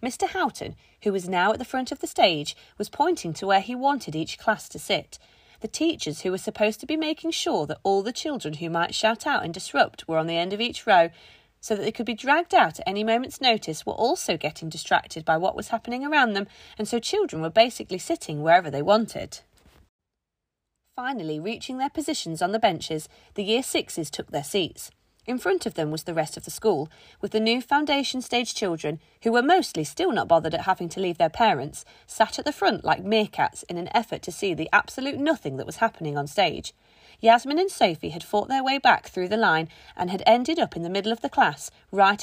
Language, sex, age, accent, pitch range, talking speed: English, female, 30-49, British, 170-270 Hz, 225 wpm